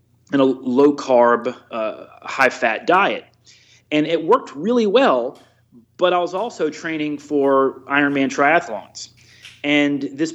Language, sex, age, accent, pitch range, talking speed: English, male, 30-49, American, 125-160 Hz, 135 wpm